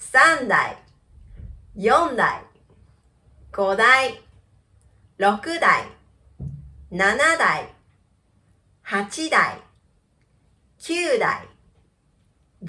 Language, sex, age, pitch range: Chinese, female, 40-59, 185-310 Hz